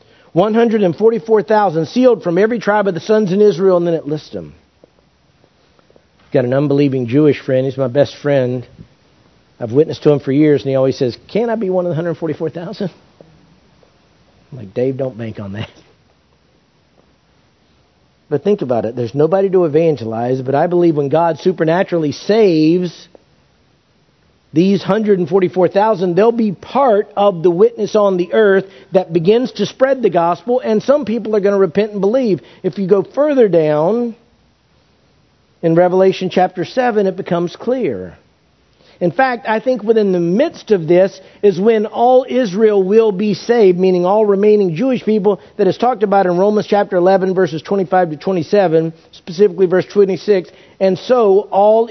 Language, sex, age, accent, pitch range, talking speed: English, male, 50-69, American, 160-210 Hz, 165 wpm